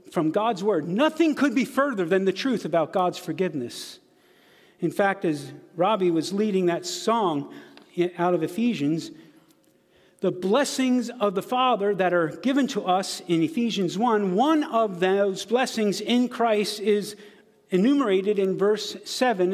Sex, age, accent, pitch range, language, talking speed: male, 50-69, American, 185-240 Hz, English, 145 wpm